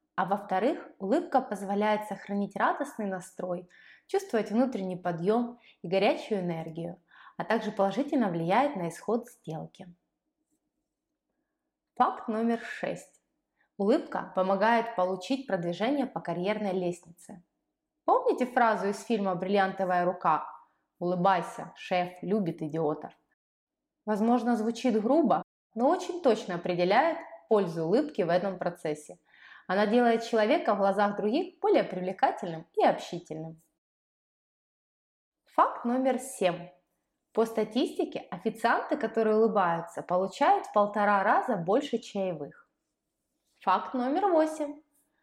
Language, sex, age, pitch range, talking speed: Russian, female, 20-39, 185-250 Hz, 105 wpm